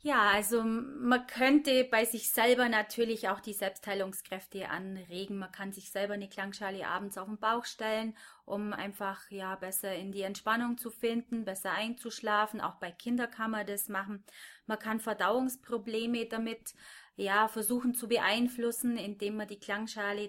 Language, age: German, 30-49